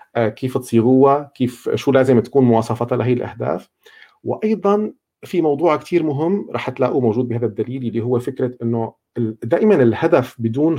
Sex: male